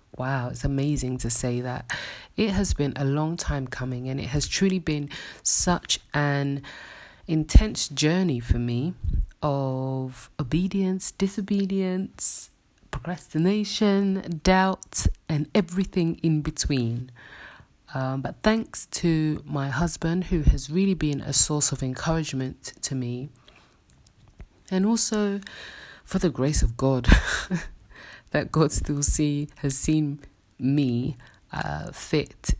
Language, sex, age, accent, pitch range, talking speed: English, female, 30-49, British, 130-160 Hz, 120 wpm